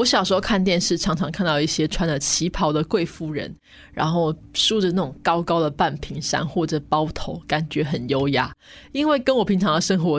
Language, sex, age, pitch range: Chinese, female, 20-39, 150-185 Hz